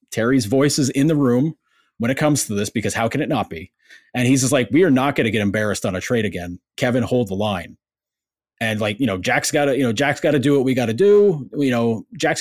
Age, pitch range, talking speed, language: 30-49, 105-145 Hz, 275 wpm, English